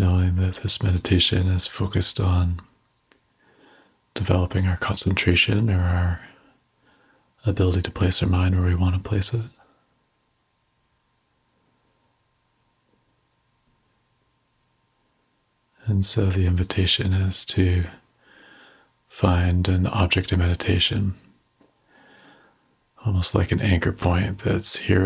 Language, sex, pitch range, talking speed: English, male, 90-100 Hz, 100 wpm